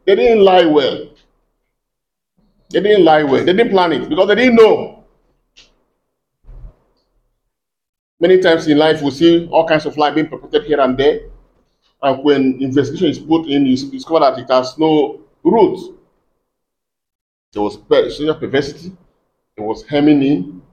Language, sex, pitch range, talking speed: English, male, 130-185 Hz, 145 wpm